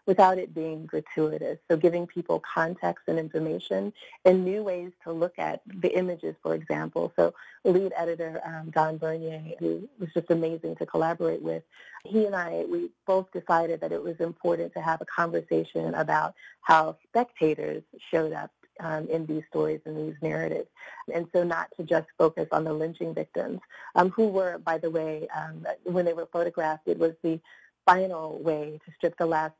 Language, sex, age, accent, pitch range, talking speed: English, female, 30-49, American, 155-180 Hz, 180 wpm